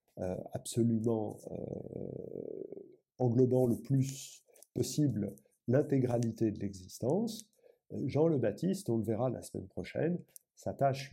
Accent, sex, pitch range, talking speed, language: French, male, 115-175 Hz, 110 wpm, French